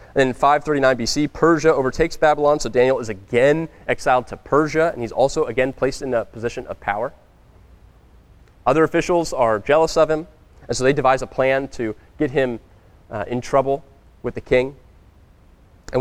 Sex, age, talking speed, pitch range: male, 20-39, 170 wpm, 95-145 Hz